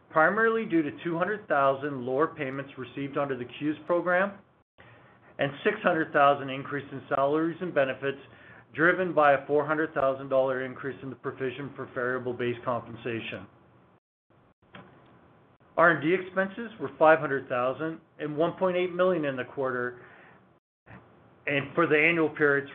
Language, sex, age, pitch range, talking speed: English, male, 40-59, 130-155 Hz, 120 wpm